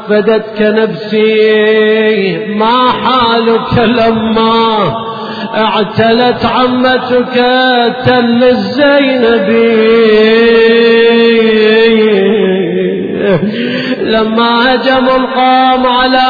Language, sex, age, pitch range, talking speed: Arabic, male, 30-49, 230-260 Hz, 50 wpm